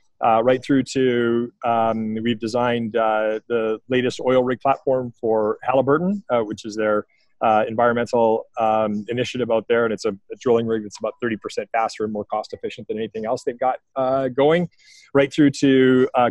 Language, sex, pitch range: English, male, 115-135 Hz